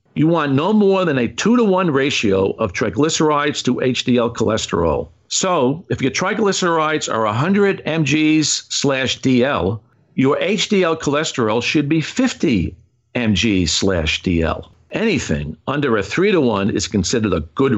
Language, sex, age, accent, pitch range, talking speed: English, male, 50-69, American, 110-155 Hz, 145 wpm